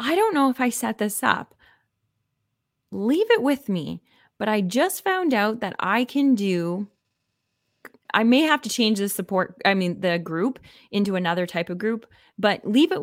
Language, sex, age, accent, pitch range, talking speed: English, female, 20-39, American, 180-230 Hz, 185 wpm